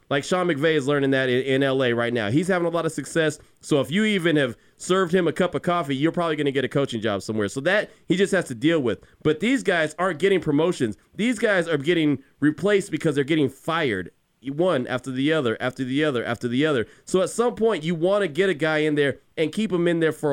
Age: 30-49